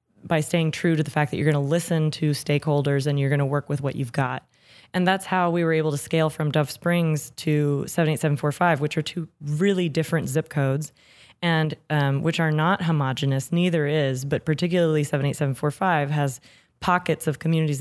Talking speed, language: 190 wpm, English